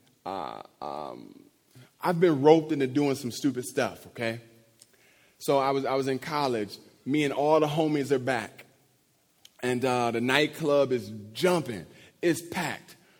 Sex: male